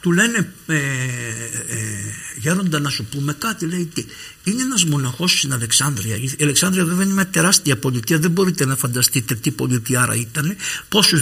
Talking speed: 165 wpm